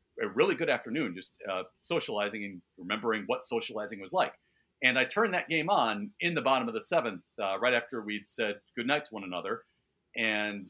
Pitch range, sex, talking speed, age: 115-170 Hz, male, 200 wpm, 40-59